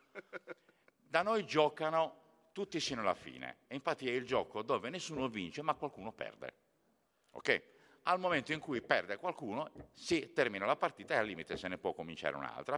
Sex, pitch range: male, 95-155 Hz